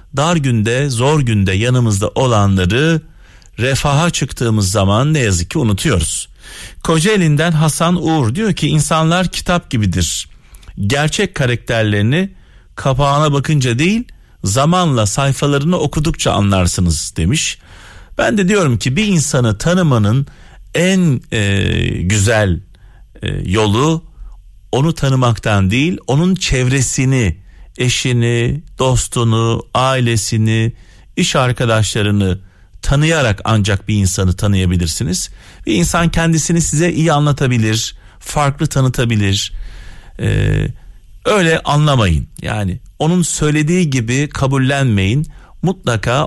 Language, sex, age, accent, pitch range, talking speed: Turkish, male, 50-69, native, 105-155 Hz, 100 wpm